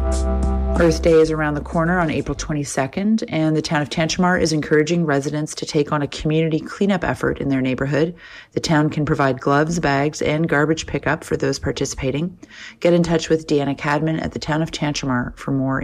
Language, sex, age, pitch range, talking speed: English, female, 30-49, 140-165 Hz, 195 wpm